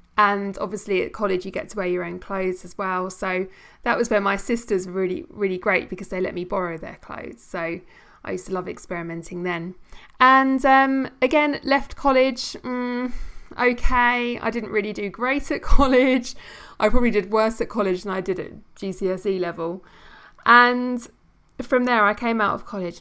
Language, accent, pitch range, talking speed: English, British, 185-240 Hz, 185 wpm